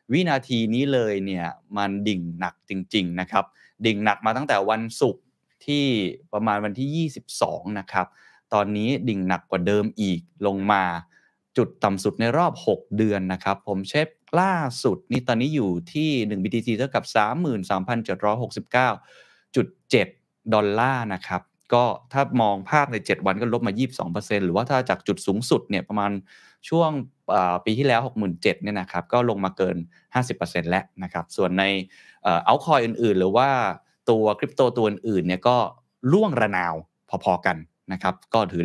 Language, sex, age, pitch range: Thai, male, 20-39, 100-130 Hz